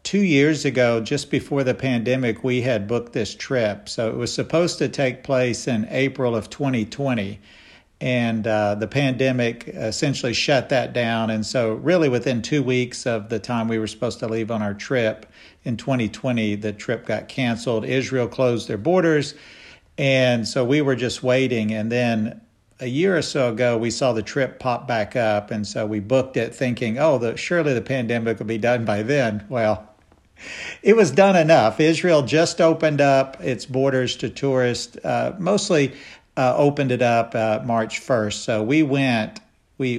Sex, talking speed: male, 180 wpm